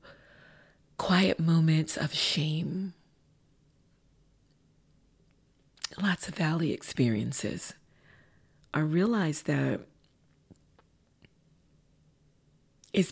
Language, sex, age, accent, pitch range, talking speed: English, female, 40-59, American, 140-205 Hz, 55 wpm